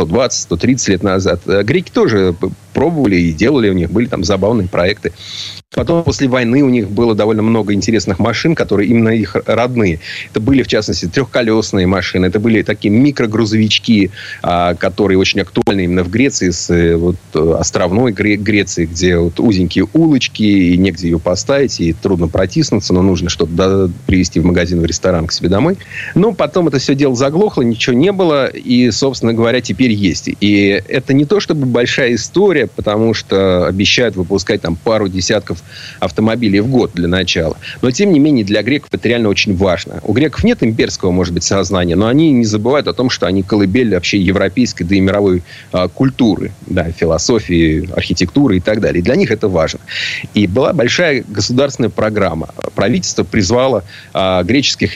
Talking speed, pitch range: 170 wpm, 95-120 Hz